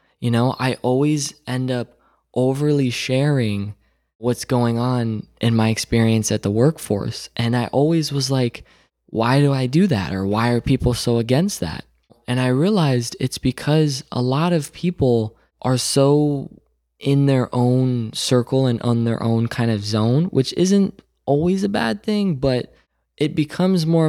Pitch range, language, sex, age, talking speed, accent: 120-155 Hz, English, male, 20-39, 165 wpm, American